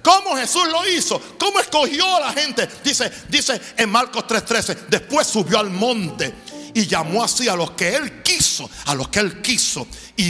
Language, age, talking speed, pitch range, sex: Spanish, 60-79, 185 wpm, 160-240 Hz, male